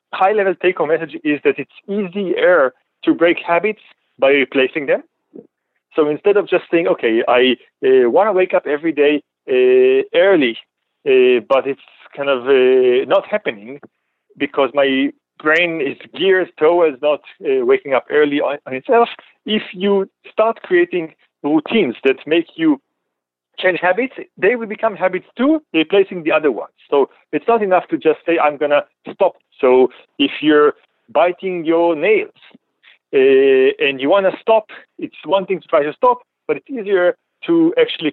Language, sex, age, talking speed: English, male, 40-59, 160 wpm